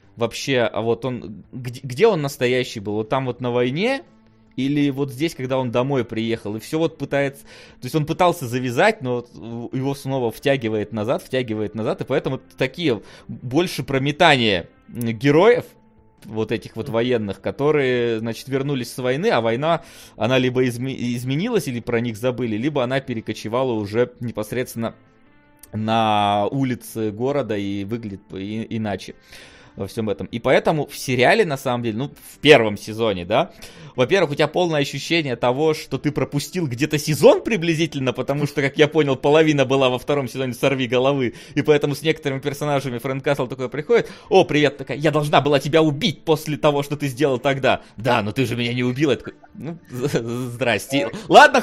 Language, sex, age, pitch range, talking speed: Russian, male, 20-39, 115-145 Hz, 170 wpm